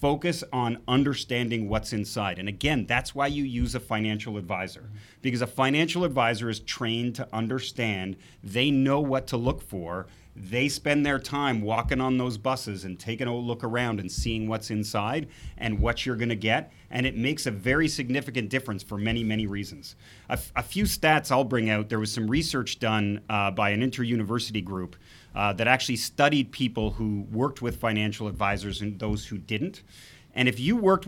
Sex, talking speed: male, 185 wpm